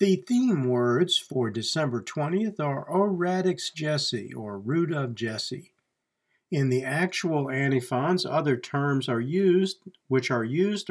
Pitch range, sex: 125-165 Hz, male